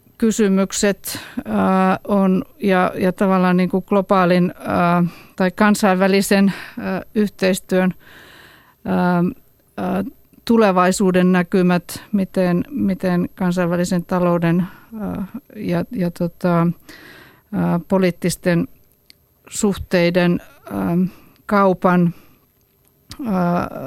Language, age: Finnish, 50-69